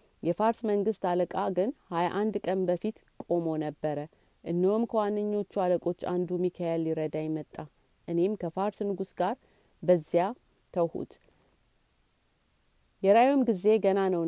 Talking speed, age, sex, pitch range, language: 105 wpm, 30-49, female, 170-210 Hz, Amharic